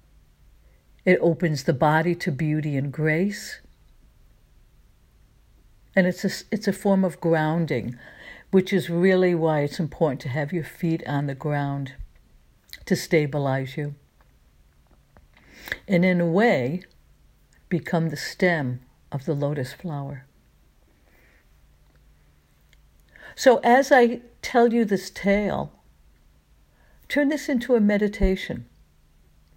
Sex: female